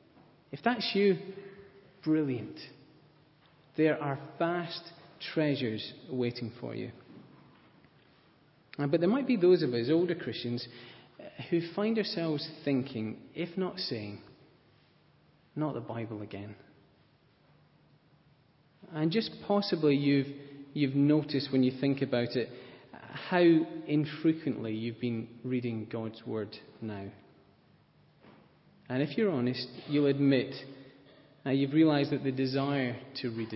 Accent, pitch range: British, 125-160 Hz